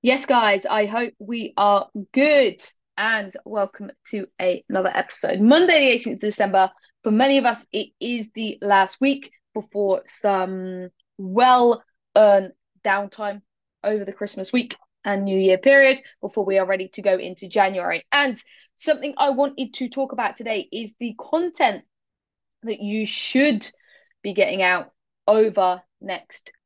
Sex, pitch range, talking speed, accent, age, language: female, 195-240 Hz, 145 wpm, British, 20-39, English